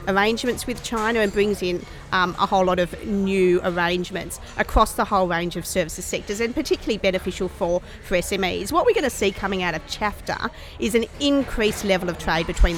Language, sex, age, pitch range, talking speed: English, female, 40-59, 180-220 Hz, 195 wpm